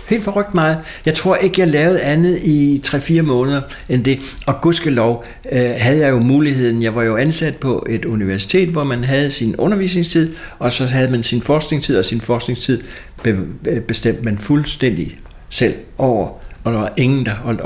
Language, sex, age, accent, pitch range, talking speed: Danish, male, 60-79, native, 110-135 Hz, 180 wpm